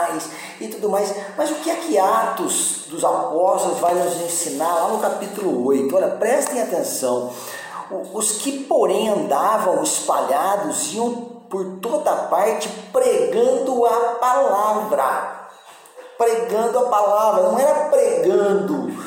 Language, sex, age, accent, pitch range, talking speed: Portuguese, male, 40-59, Brazilian, 170-270 Hz, 125 wpm